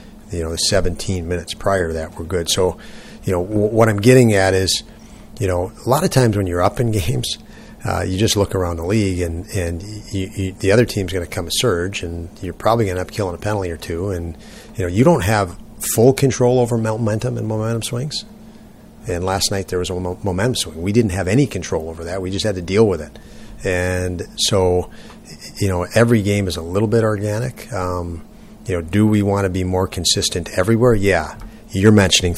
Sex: male